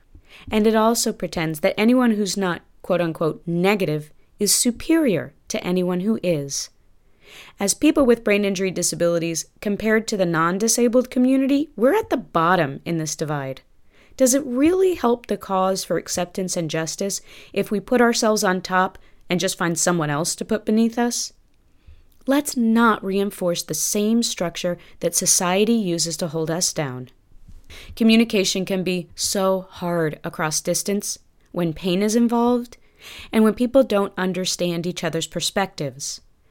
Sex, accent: female, American